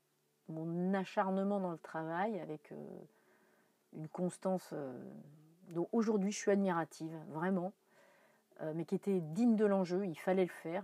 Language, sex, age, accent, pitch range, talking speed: French, female, 40-59, French, 155-190 Hz, 150 wpm